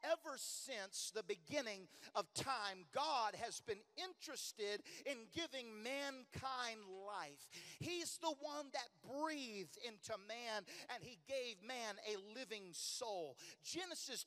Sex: male